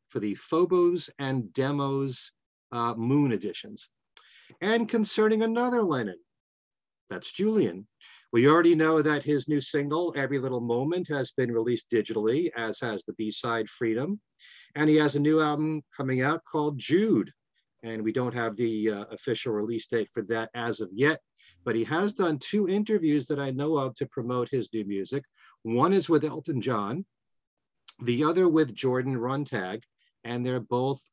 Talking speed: 165 wpm